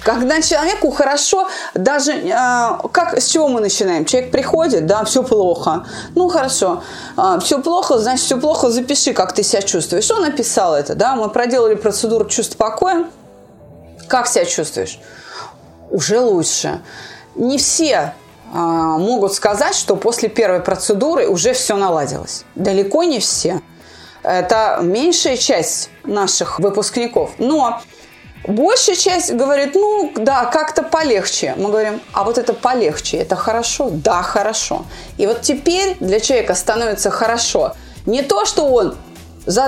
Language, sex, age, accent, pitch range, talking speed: Russian, female, 30-49, native, 215-330 Hz, 135 wpm